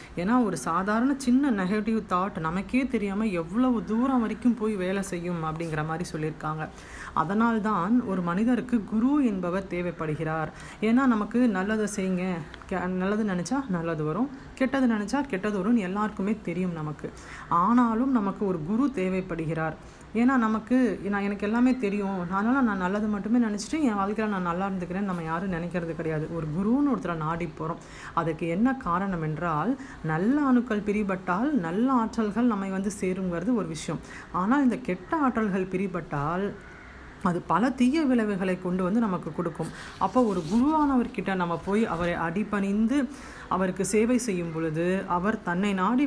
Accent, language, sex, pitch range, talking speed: native, Tamil, female, 175-235 Hz, 140 wpm